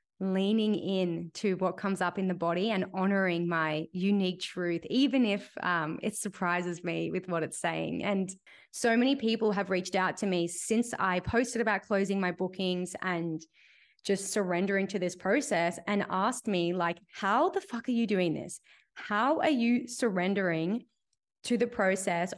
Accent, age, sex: Australian, 20-39, female